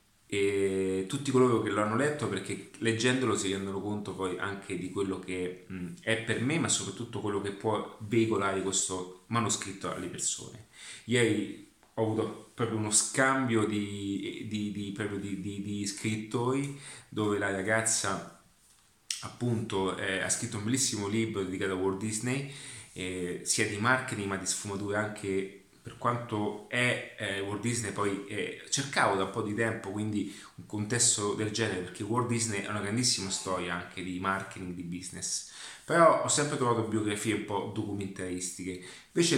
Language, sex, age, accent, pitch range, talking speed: Italian, male, 30-49, native, 100-115 Hz, 160 wpm